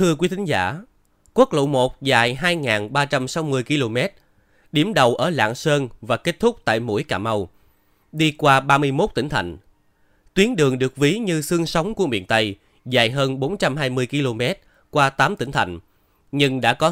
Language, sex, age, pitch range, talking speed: Vietnamese, male, 20-39, 110-160 Hz, 170 wpm